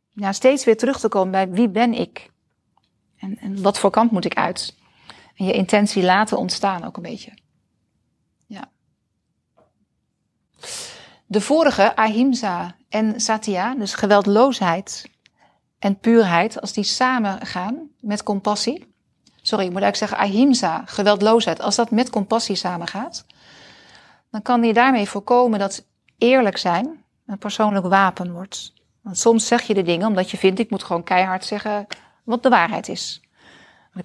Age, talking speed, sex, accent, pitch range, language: 40-59, 150 wpm, female, Dutch, 190-230 Hz, Dutch